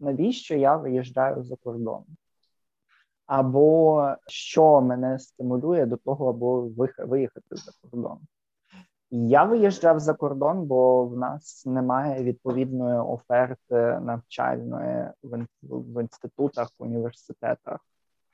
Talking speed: 100 wpm